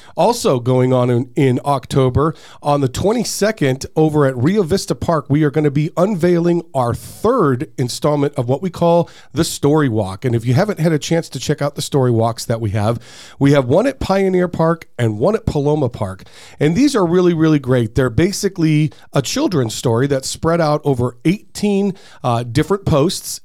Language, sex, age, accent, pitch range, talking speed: English, male, 40-59, American, 125-165 Hz, 195 wpm